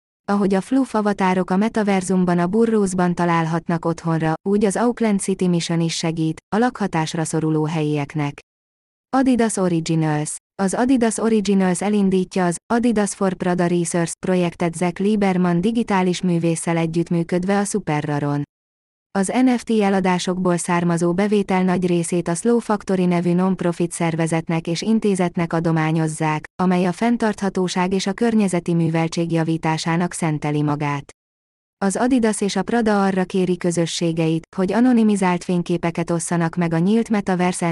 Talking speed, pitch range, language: 130 wpm, 165-200 Hz, Hungarian